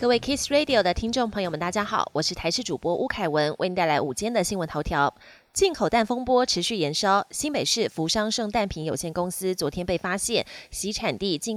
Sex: female